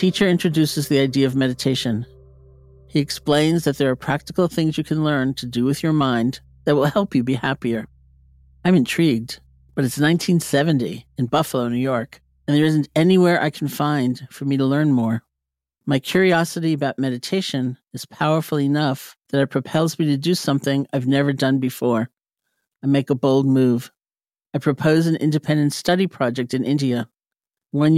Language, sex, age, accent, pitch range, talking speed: English, male, 50-69, American, 125-160 Hz, 175 wpm